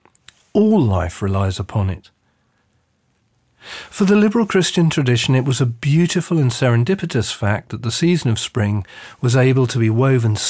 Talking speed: 155 wpm